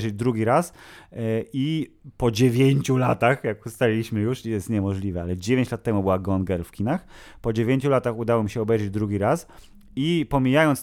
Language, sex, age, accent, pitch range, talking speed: Polish, male, 30-49, native, 110-140 Hz, 170 wpm